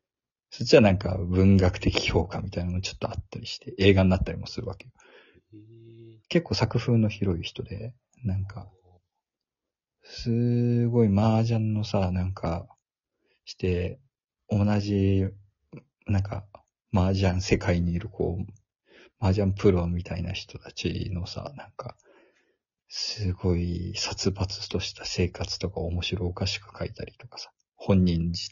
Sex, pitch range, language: male, 90-115 Hz, Japanese